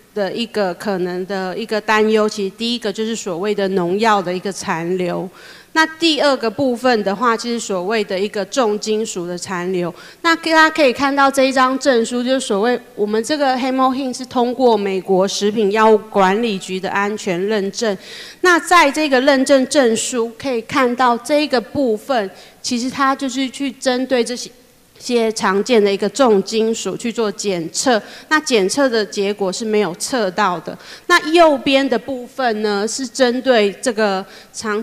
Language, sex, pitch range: Chinese, female, 205-255 Hz